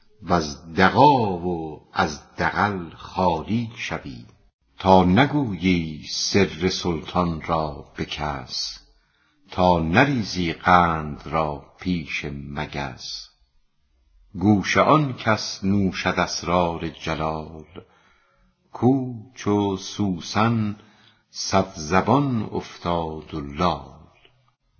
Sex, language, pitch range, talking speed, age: female, Persian, 80-105 Hz, 80 wpm, 50-69